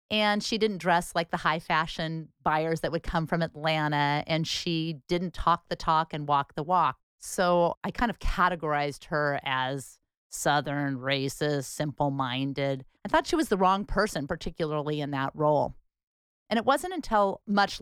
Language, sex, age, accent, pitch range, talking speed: English, female, 30-49, American, 150-185 Hz, 170 wpm